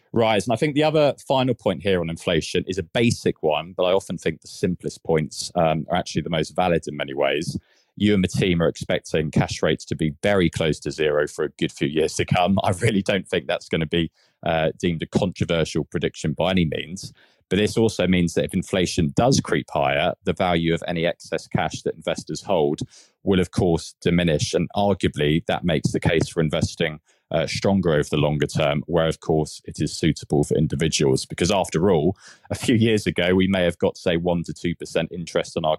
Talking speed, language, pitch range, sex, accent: 220 wpm, English, 80-100 Hz, male, British